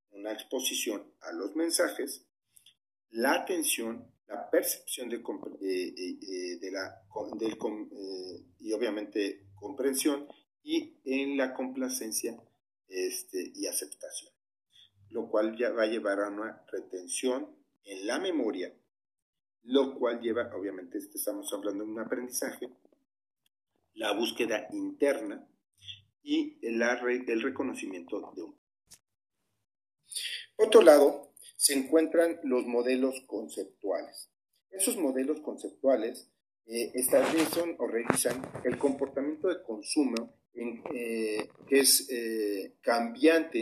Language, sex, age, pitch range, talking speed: Spanish, male, 40-59, 115-165 Hz, 105 wpm